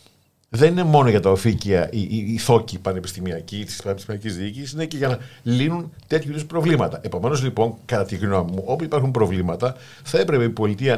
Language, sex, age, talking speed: Greek, male, 50-69, 185 wpm